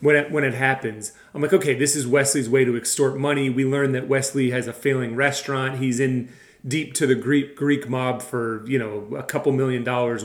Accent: American